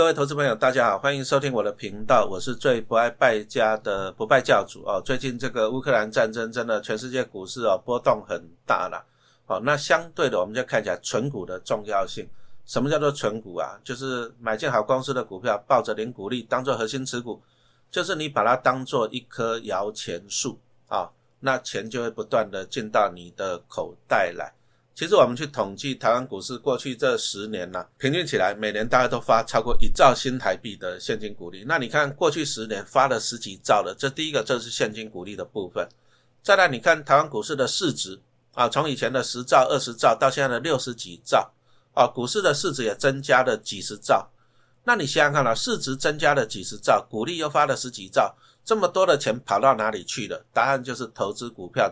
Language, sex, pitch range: Chinese, male, 110-140 Hz